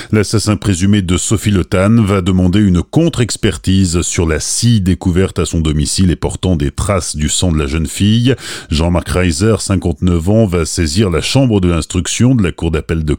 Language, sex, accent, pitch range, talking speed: French, male, French, 85-110 Hz, 185 wpm